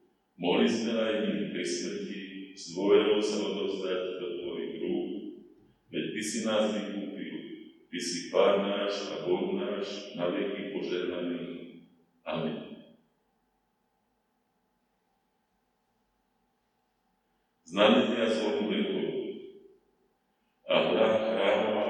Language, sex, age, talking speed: Slovak, male, 40-59, 90 wpm